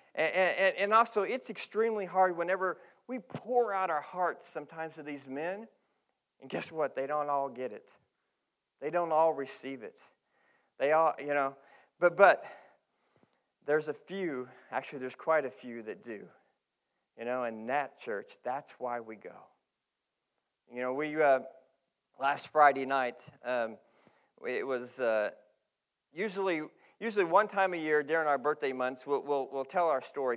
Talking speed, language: 160 wpm, English